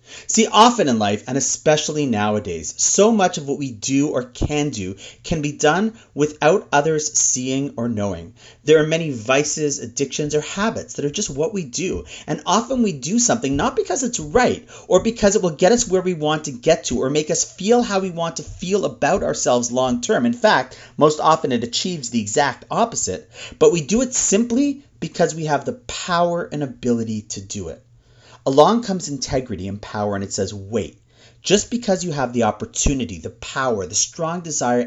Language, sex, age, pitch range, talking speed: English, male, 40-59, 120-180 Hz, 195 wpm